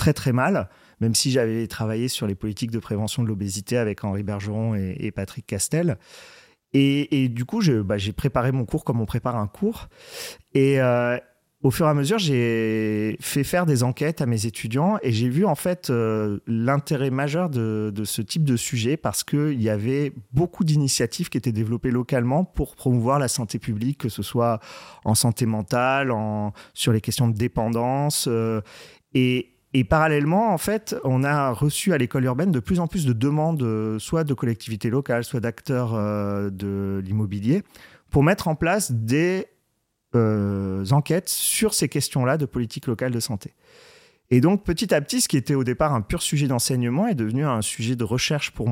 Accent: French